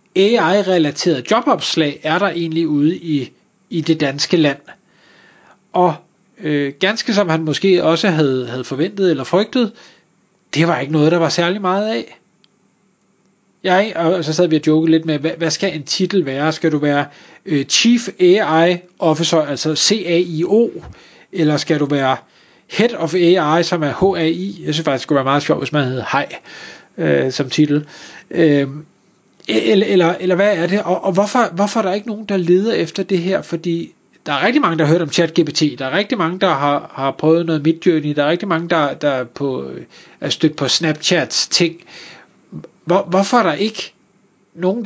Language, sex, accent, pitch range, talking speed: Danish, male, native, 160-195 Hz, 185 wpm